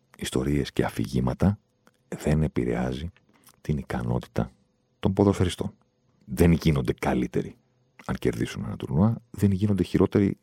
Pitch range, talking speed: 65-100 Hz, 110 wpm